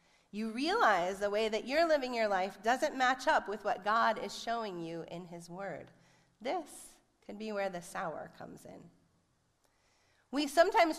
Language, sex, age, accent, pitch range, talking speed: English, female, 30-49, American, 180-270 Hz, 170 wpm